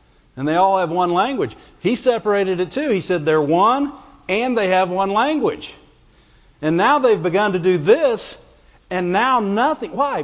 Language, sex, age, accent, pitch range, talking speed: English, male, 50-69, American, 145-215 Hz, 175 wpm